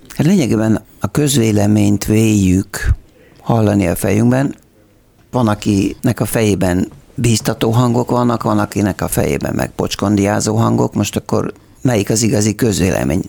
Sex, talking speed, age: male, 120 wpm, 60-79